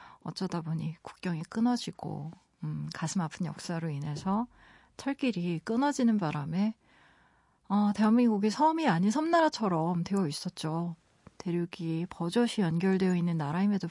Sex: female